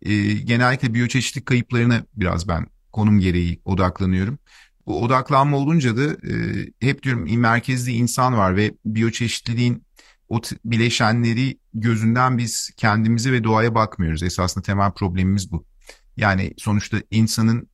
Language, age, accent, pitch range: Turkish, 50-69, native, 100-120 Hz